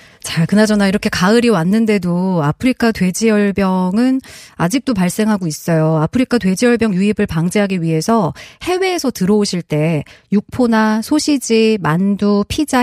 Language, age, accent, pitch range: Korean, 30-49, native, 170-225 Hz